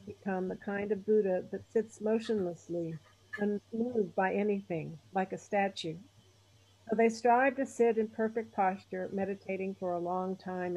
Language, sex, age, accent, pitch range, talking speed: English, female, 60-79, American, 170-220 Hz, 150 wpm